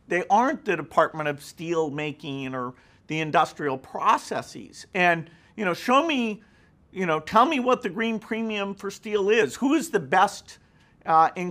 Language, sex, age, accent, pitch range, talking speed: English, male, 50-69, American, 145-200 Hz, 170 wpm